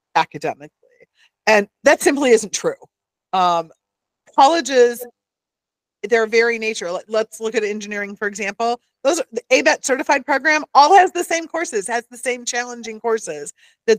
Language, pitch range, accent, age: English, 190-240 Hz, American, 40-59